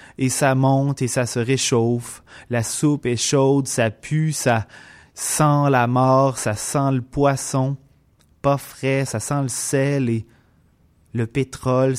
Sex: male